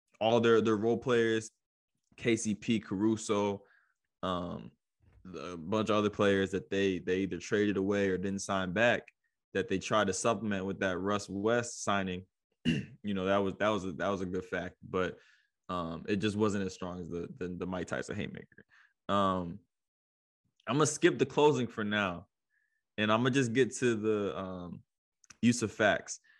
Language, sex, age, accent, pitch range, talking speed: English, male, 20-39, American, 95-120 Hz, 175 wpm